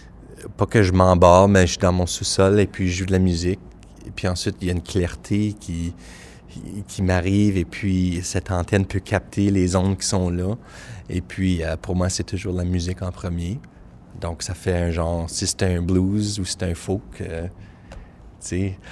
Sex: male